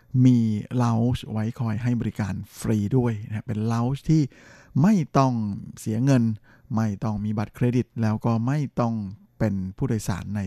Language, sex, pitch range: Thai, male, 110-130 Hz